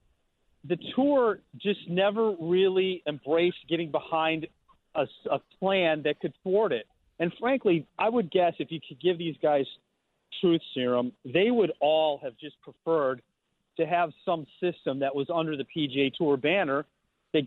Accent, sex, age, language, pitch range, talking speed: American, male, 40-59, English, 150-185 Hz, 160 wpm